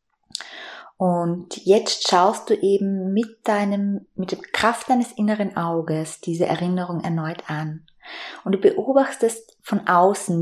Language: German